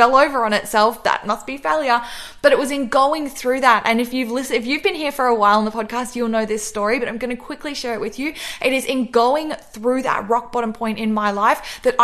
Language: English